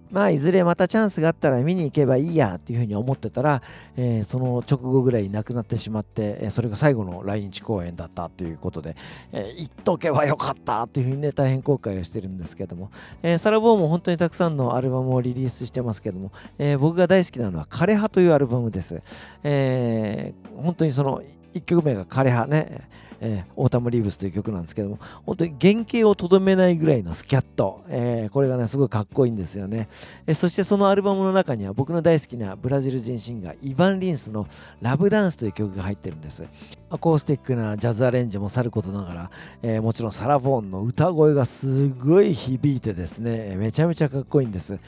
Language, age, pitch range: Japanese, 50-69, 100-150 Hz